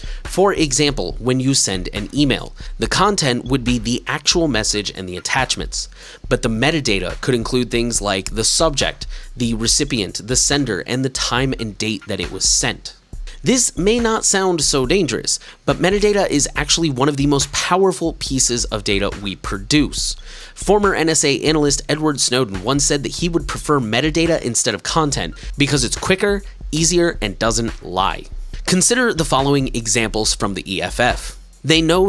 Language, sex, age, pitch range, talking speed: English, male, 30-49, 115-160 Hz, 170 wpm